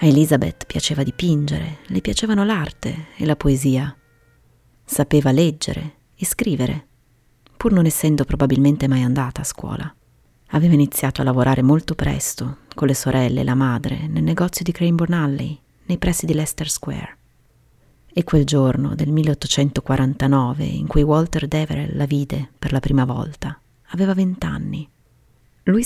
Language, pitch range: Italian, 130-160 Hz